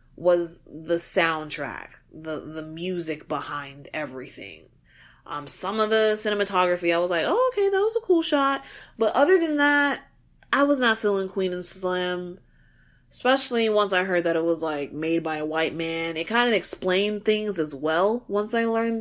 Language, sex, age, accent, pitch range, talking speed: English, female, 20-39, American, 180-290 Hz, 180 wpm